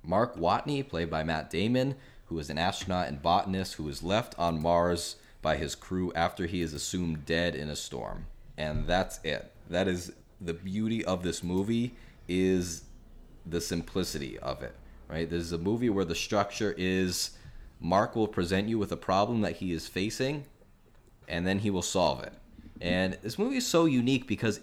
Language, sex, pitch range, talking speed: English, male, 85-105 Hz, 185 wpm